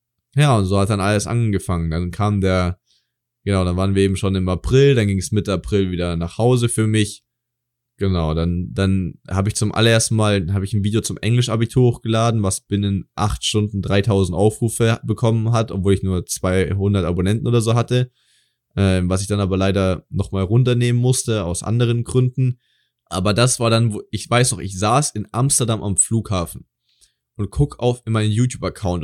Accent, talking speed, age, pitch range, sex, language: German, 190 wpm, 20-39, 95-115 Hz, male, German